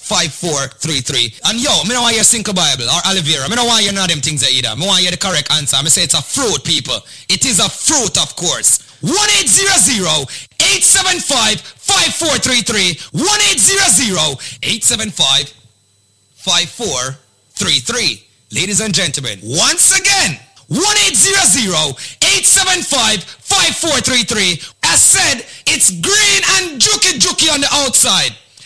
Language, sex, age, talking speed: English, male, 30-49, 140 wpm